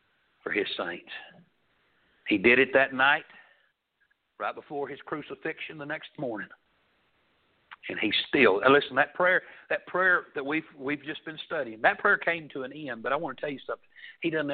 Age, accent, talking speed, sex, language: 60-79, American, 180 wpm, male, English